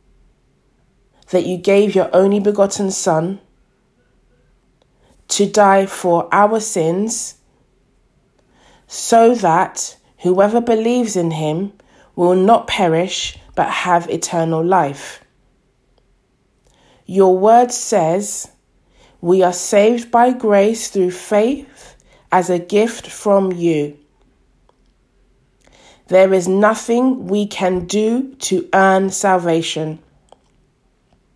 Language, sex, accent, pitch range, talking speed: English, female, British, 180-230 Hz, 95 wpm